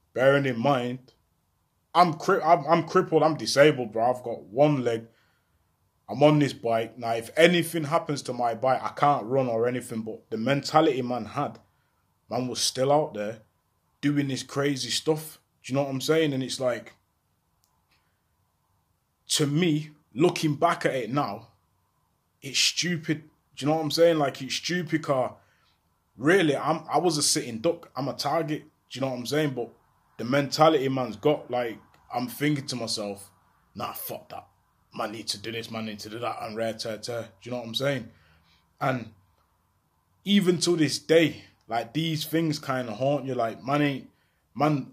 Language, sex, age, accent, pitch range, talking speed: English, male, 20-39, British, 115-150 Hz, 185 wpm